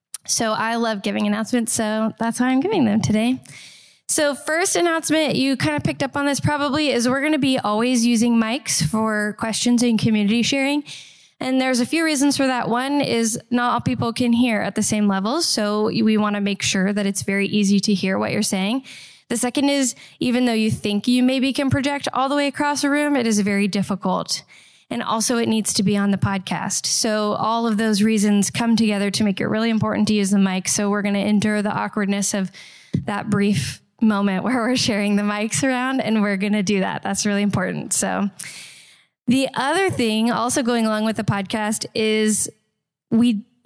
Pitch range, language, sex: 205-250 Hz, English, female